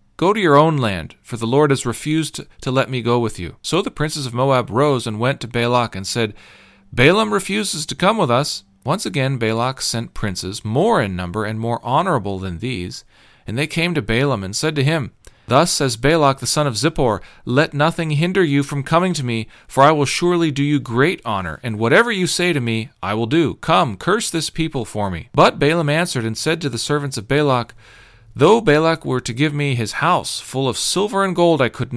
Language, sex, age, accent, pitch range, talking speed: English, male, 40-59, American, 110-145 Hz, 225 wpm